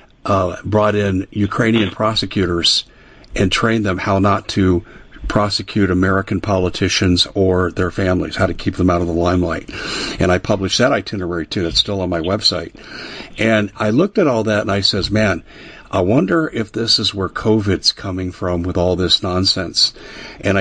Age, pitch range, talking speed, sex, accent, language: 50-69, 95-110 Hz, 175 wpm, male, American, English